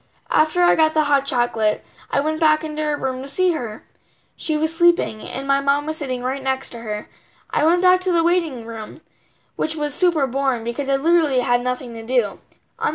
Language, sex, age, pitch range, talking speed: English, female, 10-29, 260-340 Hz, 215 wpm